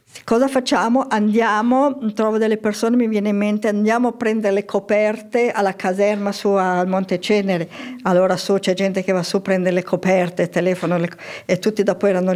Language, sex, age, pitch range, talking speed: Italian, female, 50-69, 180-225 Hz, 185 wpm